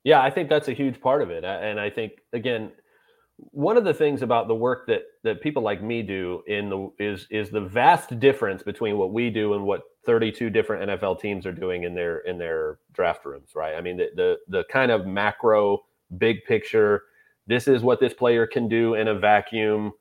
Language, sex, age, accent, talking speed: English, male, 30-49, American, 215 wpm